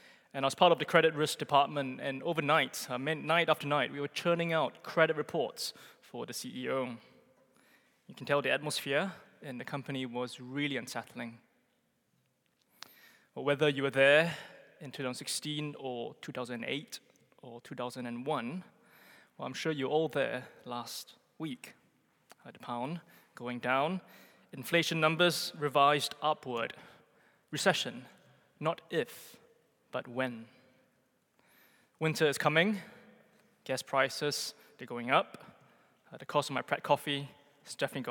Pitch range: 130-160 Hz